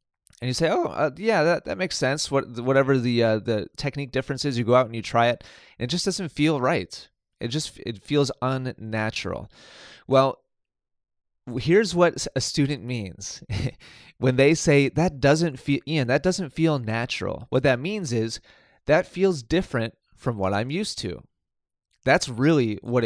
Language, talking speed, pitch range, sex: English, 175 wpm, 115-150 Hz, male